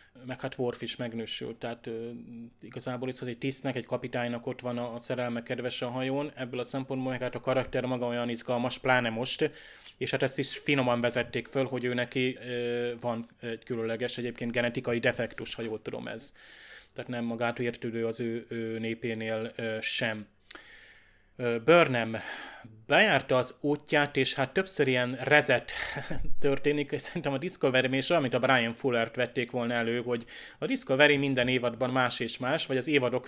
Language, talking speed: Hungarian, 175 wpm